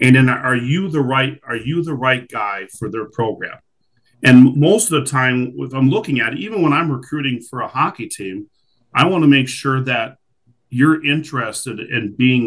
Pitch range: 120-145 Hz